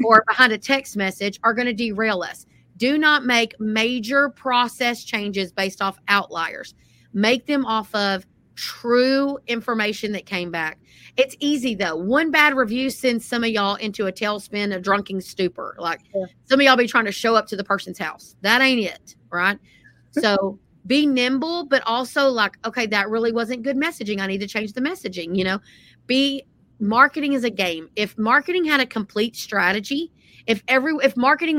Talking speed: 180 wpm